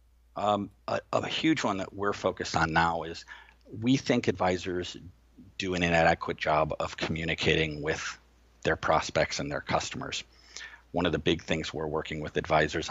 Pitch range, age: 80-100 Hz, 50-69